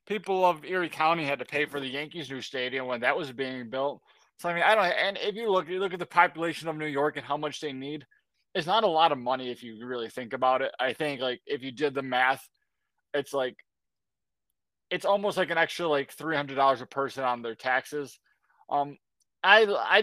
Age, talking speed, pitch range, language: 20-39, 230 wpm, 130-155 Hz, English